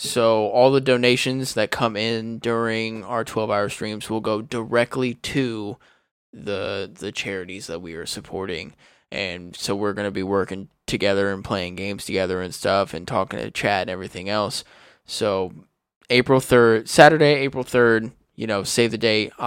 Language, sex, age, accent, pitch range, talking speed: English, male, 20-39, American, 100-125 Hz, 165 wpm